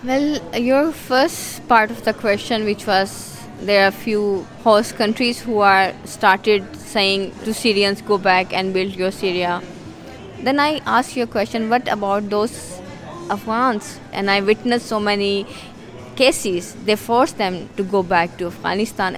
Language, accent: German, Indian